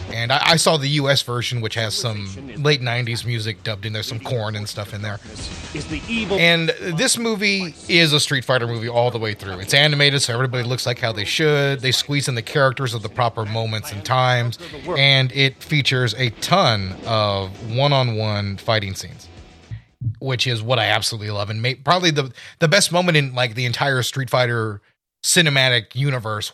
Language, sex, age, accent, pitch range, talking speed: English, male, 30-49, American, 115-145 Hz, 185 wpm